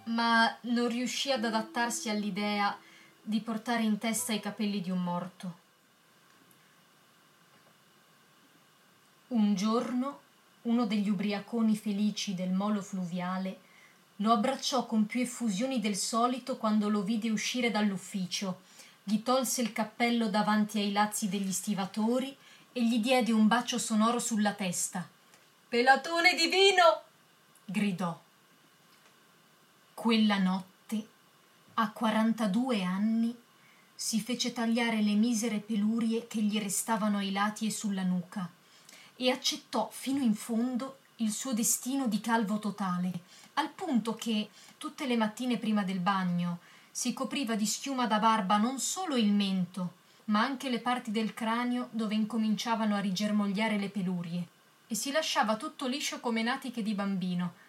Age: 30-49